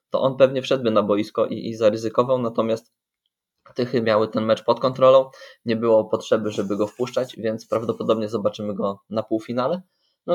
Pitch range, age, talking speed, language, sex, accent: 105-125 Hz, 20-39, 170 wpm, Polish, male, native